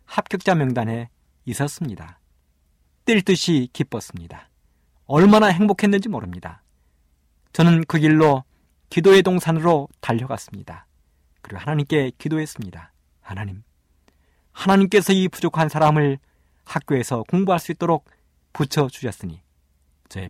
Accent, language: native, Korean